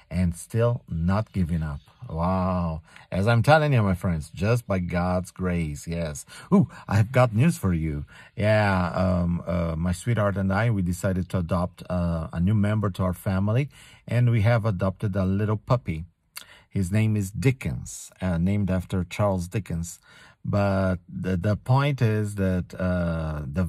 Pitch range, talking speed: 90-115 Hz, 165 wpm